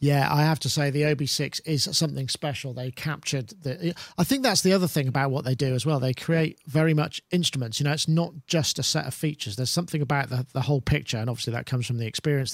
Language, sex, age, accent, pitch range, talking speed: English, male, 40-59, British, 130-155 Hz, 260 wpm